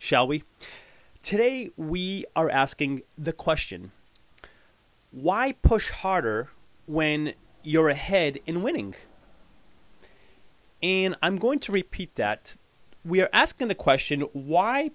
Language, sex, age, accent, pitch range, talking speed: English, male, 30-49, American, 145-195 Hz, 110 wpm